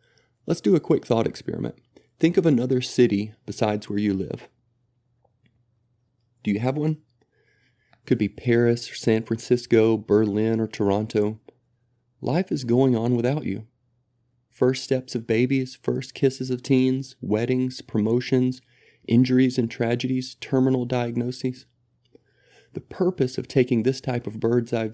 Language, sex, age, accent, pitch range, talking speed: English, male, 30-49, American, 115-130 Hz, 135 wpm